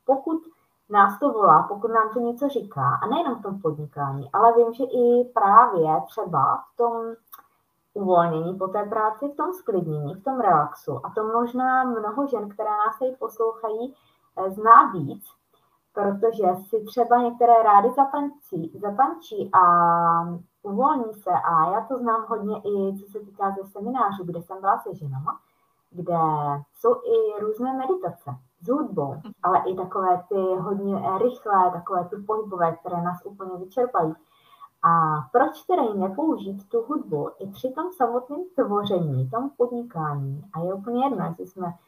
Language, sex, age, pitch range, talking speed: Czech, female, 20-39, 180-240 Hz, 155 wpm